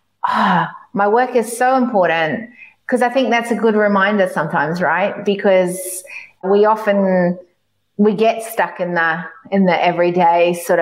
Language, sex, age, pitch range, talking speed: English, female, 30-49, 180-220 Hz, 150 wpm